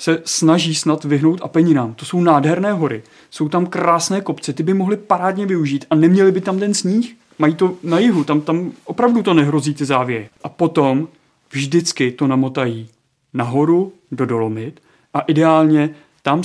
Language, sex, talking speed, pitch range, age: Czech, male, 170 wpm, 130-155 Hz, 30-49